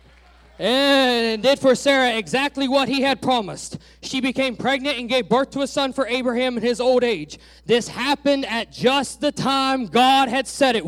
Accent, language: American, English